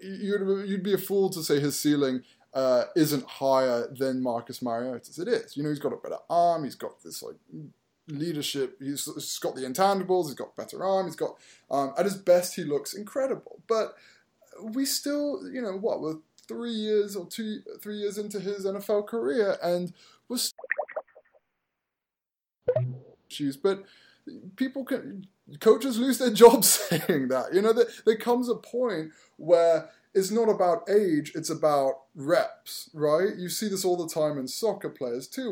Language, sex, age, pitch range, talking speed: English, male, 20-39, 155-230 Hz, 170 wpm